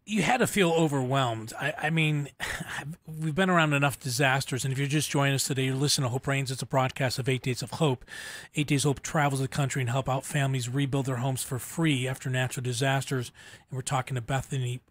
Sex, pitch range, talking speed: male, 130-160 Hz, 235 wpm